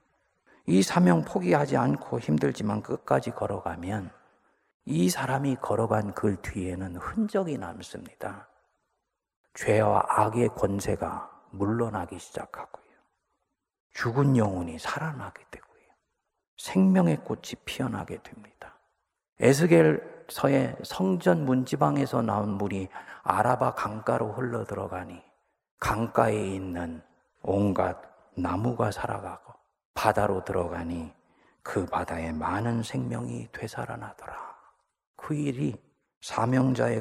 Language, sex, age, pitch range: Korean, male, 40-59, 90-120 Hz